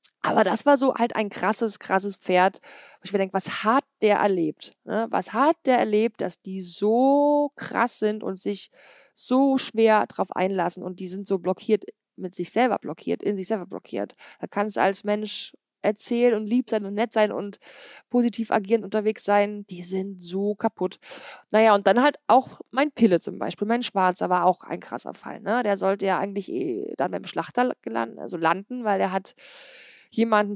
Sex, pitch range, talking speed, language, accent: female, 195-235 Hz, 190 wpm, German, German